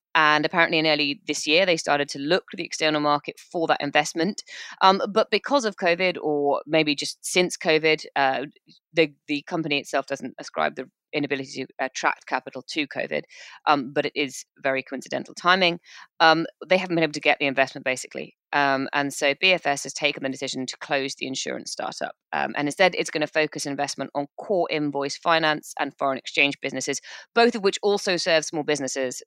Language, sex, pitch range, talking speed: English, female, 140-180 Hz, 195 wpm